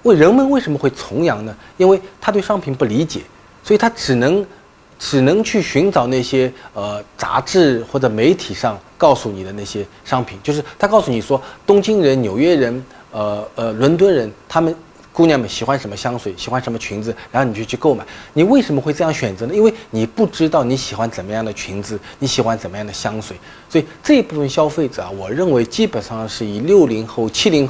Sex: male